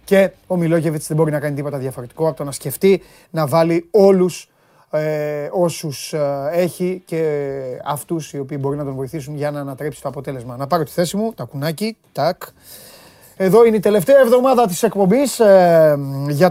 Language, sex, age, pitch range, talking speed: Greek, male, 30-49, 135-175 Hz, 180 wpm